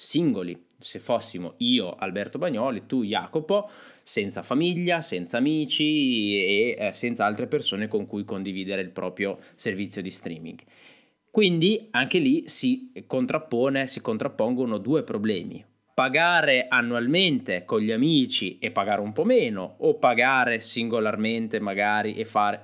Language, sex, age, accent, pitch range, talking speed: Italian, male, 20-39, native, 100-150 Hz, 130 wpm